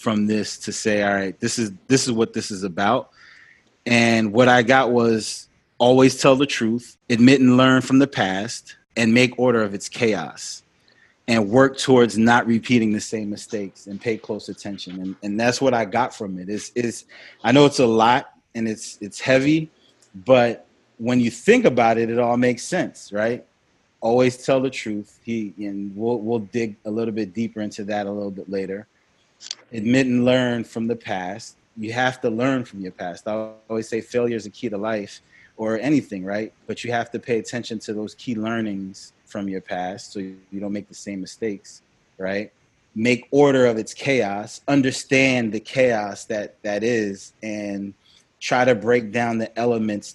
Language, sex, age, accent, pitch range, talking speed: English, male, 30-49, American, 105-120 Hz, 190 wpm